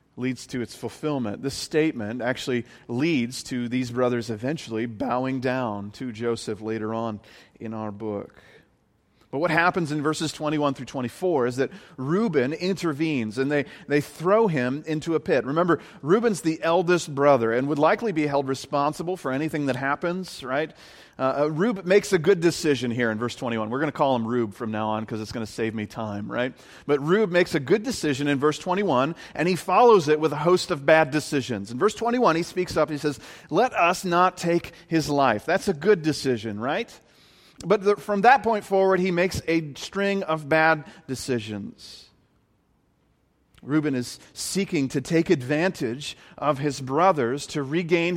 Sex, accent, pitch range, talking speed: male, American, 125-175 Hz, 180 wpm